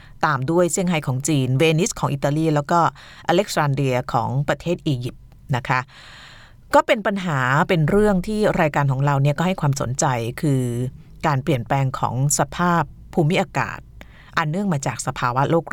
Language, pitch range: Thai, 135-170 Hz